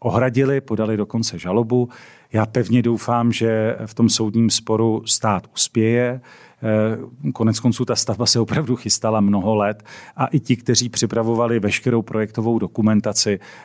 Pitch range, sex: 110-125 Hz, male